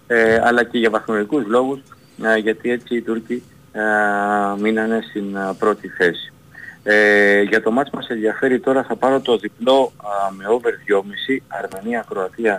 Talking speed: 130 wpm